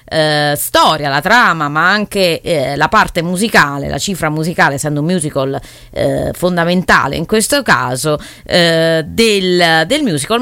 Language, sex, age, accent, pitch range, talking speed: English, female, 30-49, Italian, 160-215 Hz, 145 wpm